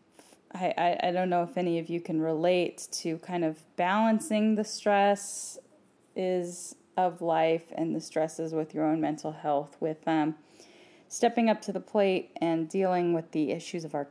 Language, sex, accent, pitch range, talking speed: English, female, American, 165-200 Hz, 175 wpm